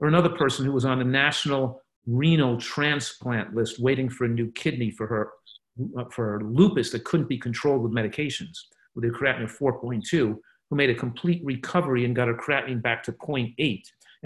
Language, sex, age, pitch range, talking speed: English, male, 50-69, 115-145 Hz, 185 wpm